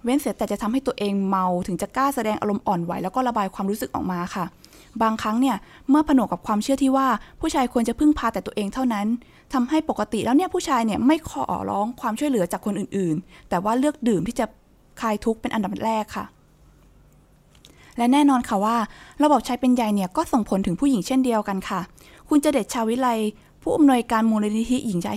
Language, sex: Thai, female